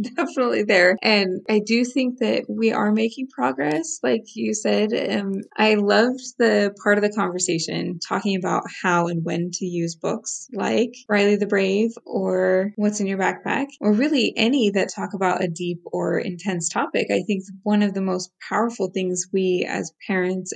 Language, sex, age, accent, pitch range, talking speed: English, female, 20-39, American, 185-230 Hz, 180 wpm